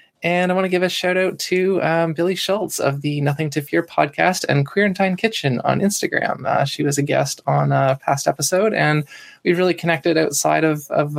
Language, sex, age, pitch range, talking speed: English, male, 20-39, 145-180 Hz, 210 wpm